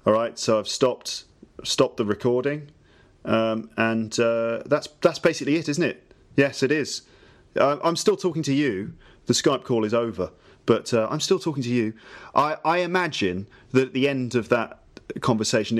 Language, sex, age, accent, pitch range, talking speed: English, male, 30-49, British, 105-130 Hz, 180 wpm